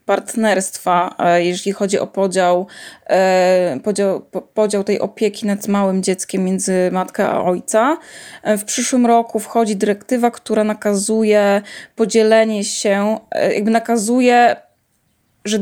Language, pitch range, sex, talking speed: Polish, 195-235 Hz, female, 110 wpm